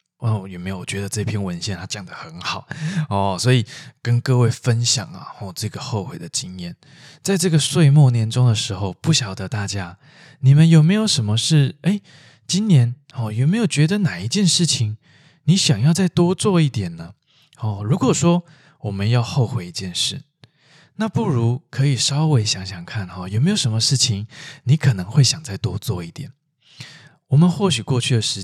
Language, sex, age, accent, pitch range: Chinese, male, 20-39, native, 105-150 Hz